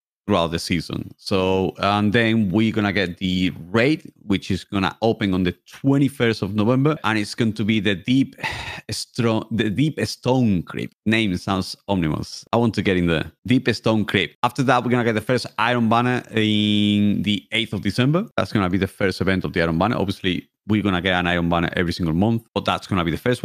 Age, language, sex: 30-49, English, male